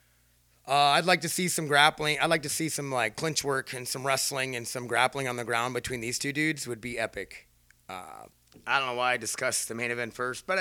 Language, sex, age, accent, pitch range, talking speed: English, male, 30-49, American, 120-150 Hz, 245 wpm